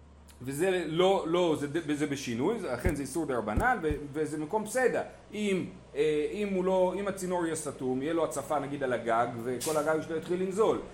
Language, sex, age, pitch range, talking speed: Hebrew, male, 30-49, 125-175 Hz, 180 wpm